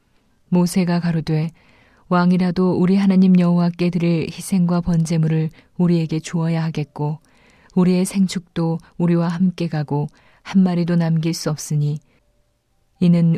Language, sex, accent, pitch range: Korean, female, native, 160-180 Hz